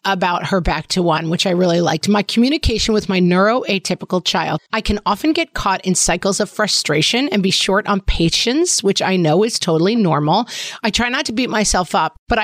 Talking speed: 210 wpm